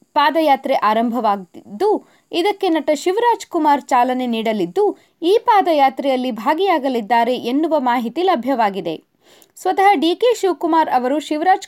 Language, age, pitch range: Kannada, 20-39, 260-365 Hz